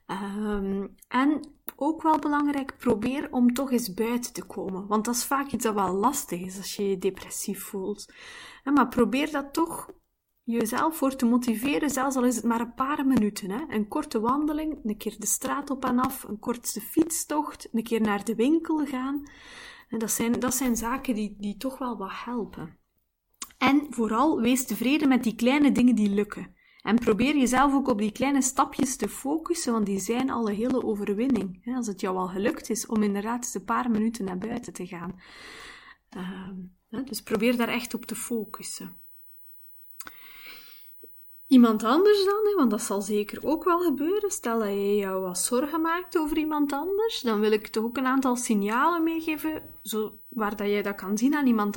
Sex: female